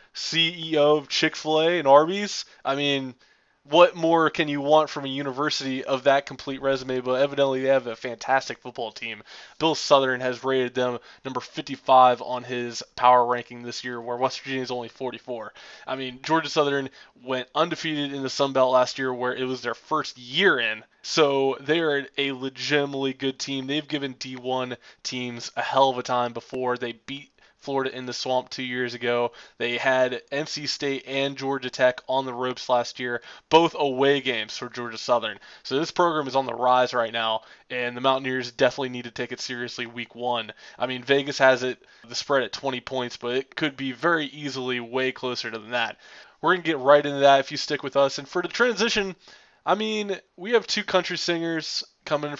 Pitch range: 125-145 Hz